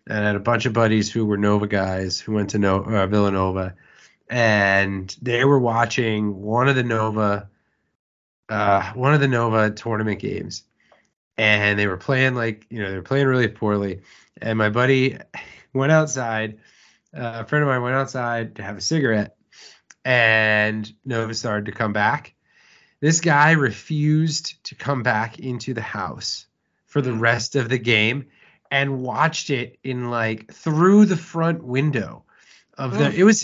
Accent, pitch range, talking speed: American, 105-145 Hz, 170 wpm